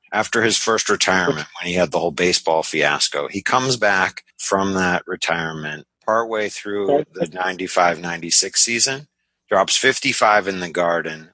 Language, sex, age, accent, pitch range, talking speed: English, male, 30-49, American, 85-95 Hz, 145 wpm